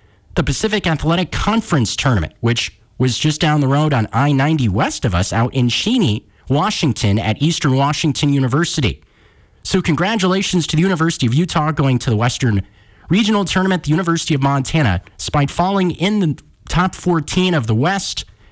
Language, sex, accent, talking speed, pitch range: English, male, American, 160 wpm, 115-160 Hz